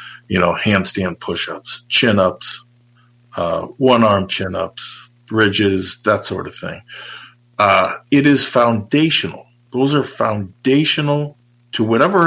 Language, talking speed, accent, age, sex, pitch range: English, 105 wpm, American, 50-69, male, 110-130 Hz